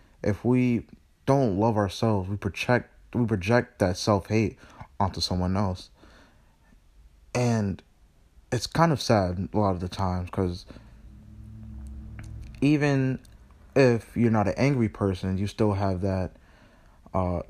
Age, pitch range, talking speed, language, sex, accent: 20-39, 95-110 Hz, 130 wpm, English, male, American